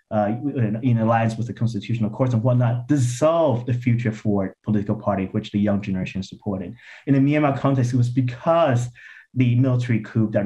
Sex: male